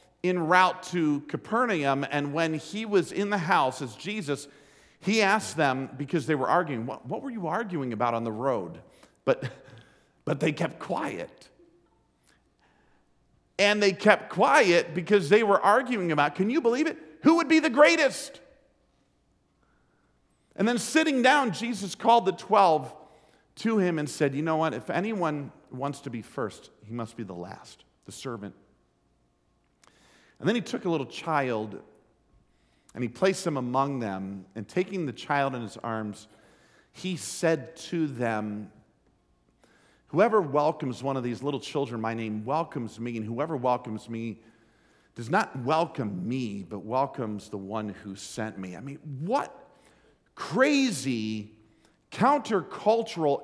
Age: 50-69